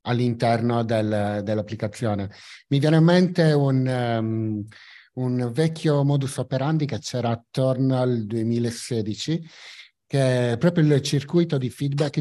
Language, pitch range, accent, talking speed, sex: Italian, 115-145 Hz, native, 115 wpm, male